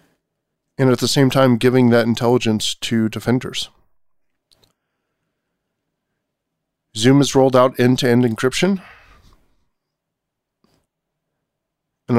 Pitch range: 110-130 Hz